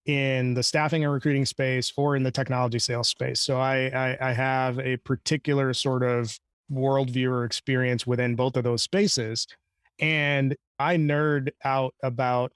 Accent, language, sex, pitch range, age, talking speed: American, English, male, 125-145 Hz, 30-49, 160 wpm